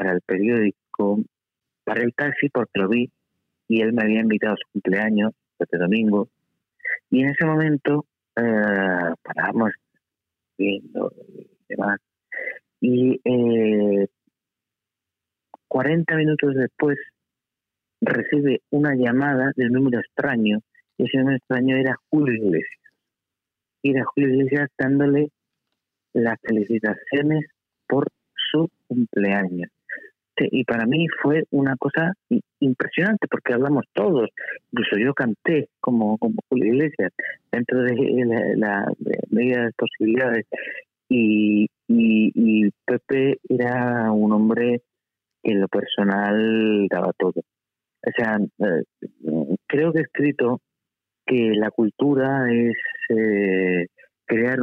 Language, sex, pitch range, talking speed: Spanish, male, 105-135 Hz, 115 wpm